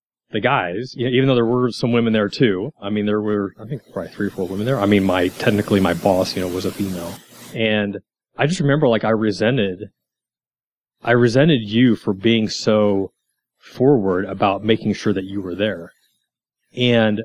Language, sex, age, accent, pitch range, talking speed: English, male, 30-49, American, 105-135 Hz, 200 wpm